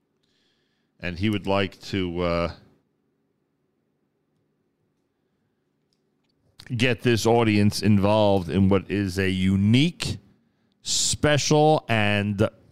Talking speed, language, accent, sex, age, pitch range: 80 wpm, English, American, male, 50-69, 95-130 Hz